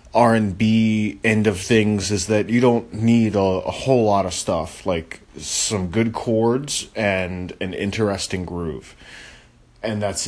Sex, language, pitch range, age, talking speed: male, English, 95-120 Hz, 20-39, 145 wpm